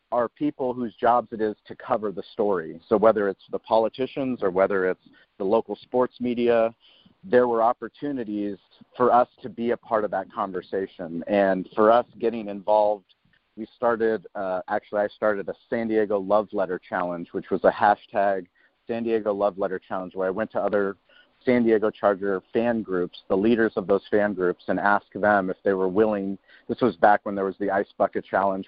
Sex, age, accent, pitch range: male, 40-59, American, 100-115 Hz